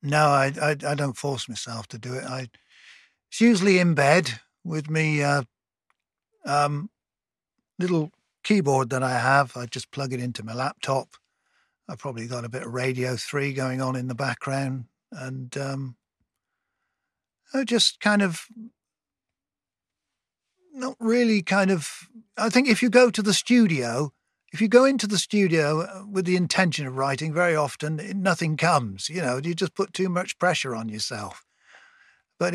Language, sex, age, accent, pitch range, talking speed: English, male, 50-69, British, 130-185 Hz, 160 wpm